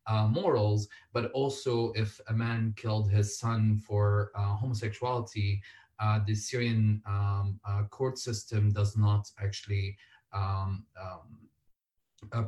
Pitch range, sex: 105-120 Hz, male